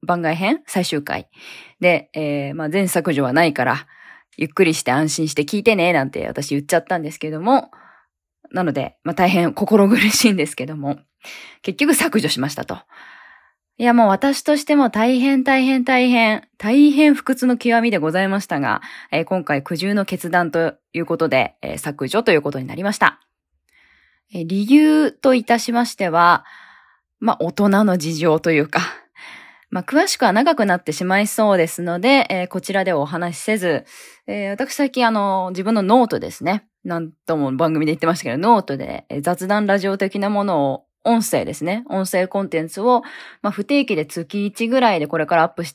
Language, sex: Japanese, female